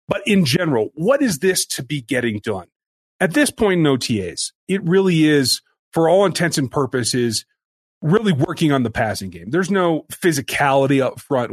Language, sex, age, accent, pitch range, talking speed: English, male, 30-49, American, 120-165 Hz, 175 wpm